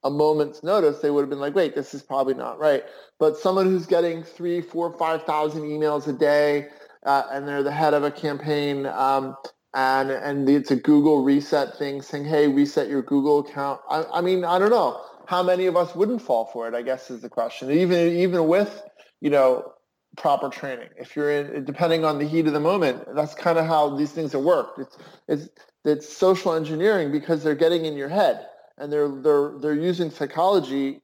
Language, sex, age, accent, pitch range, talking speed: English, male, 30-49, American, 140-160 Hz, 210 wpm